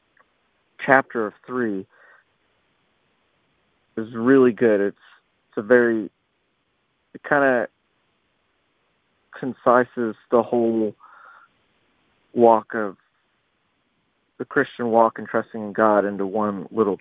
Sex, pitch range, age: male, 105-120 Hz, 40-59